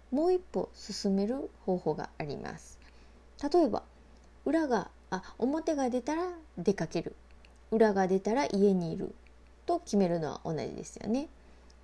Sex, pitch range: female, 175-255 Hz